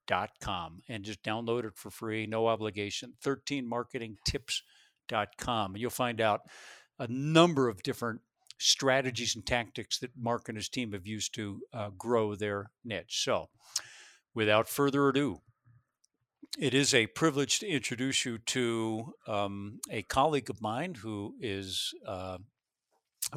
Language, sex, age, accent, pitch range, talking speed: English, male, 50-69, American, 110-140 Hz, 140 wpm